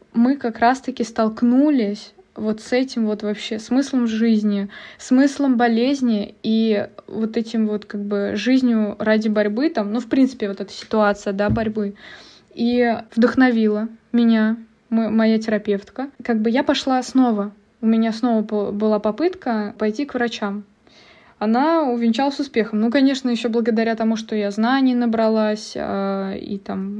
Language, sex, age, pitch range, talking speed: Russian, female, 20-39, 215-245 Hz, 140 wpm